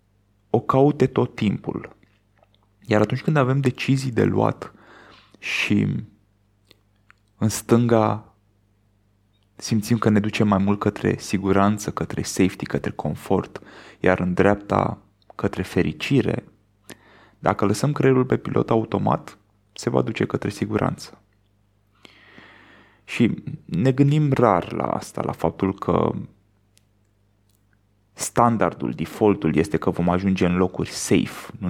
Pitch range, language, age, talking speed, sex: 100-115 Hz, Romanian, 20-39, 115 wpm, male